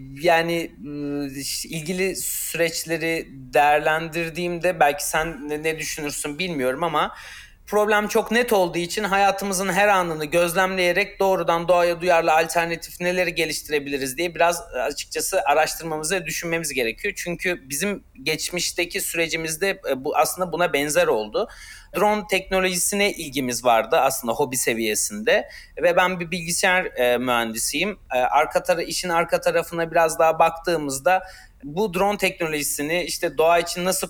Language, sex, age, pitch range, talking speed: Turkish, male, 30-49, 145-180 Hz, 120 wpm